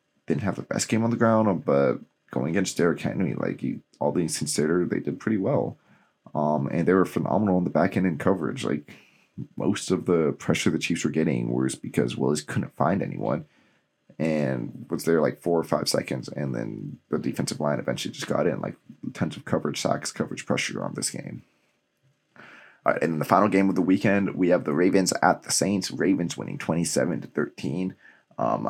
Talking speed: 205 wpm